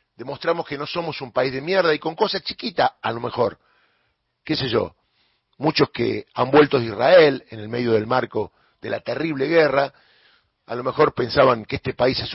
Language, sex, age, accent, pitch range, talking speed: Spanish, male, 40-59, Argentinian, 120-165 Hz, 200 wpm